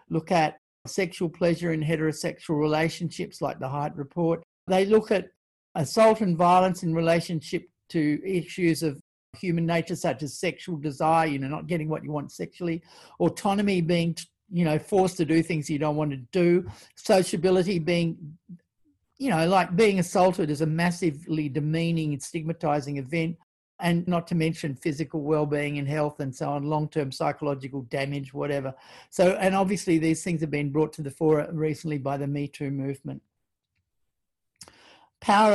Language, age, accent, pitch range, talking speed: English, 50-69, Australian, 150-175 Hz, 160 wpm